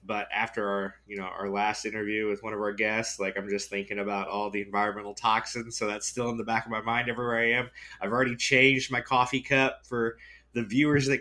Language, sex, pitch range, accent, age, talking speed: English, male, 100-130 Hz, American, 20-39, 235 wpm